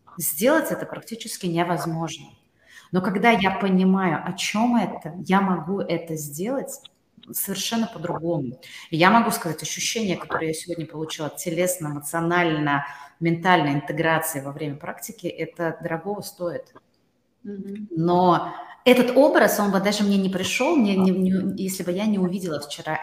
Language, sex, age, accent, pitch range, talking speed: Russian, female, 30-49, native, 155-200 Hz, 135 wpm